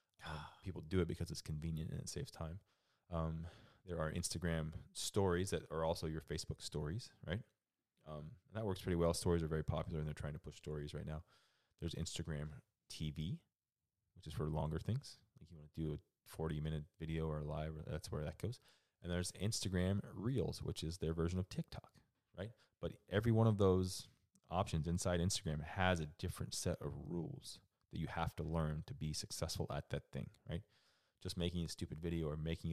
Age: 20-39